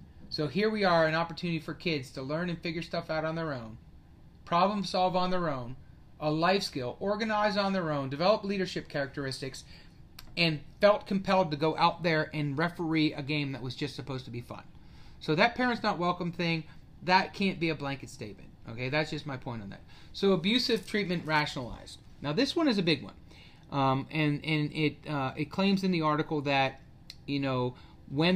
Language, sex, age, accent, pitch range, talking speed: English, male, 30-49, American, 140-180 Hz, 200 wpm